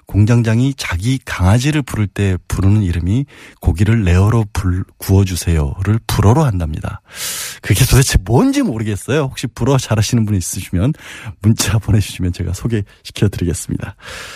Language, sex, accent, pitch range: Korean, male, native, 100-150 Hz